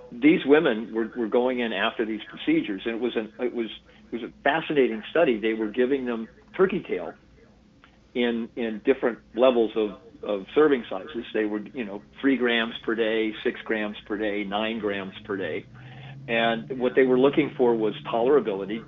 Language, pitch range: English, 110-125 Hz